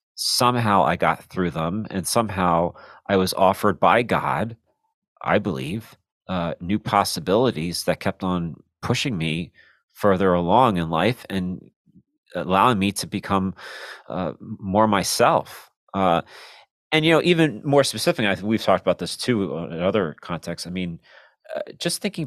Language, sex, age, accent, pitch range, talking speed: English, male, 40-59, American, 90-110 Hz, 150 wpm